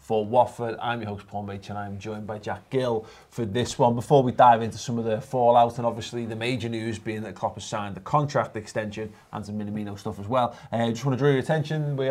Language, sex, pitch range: English, male, 110-140 Hz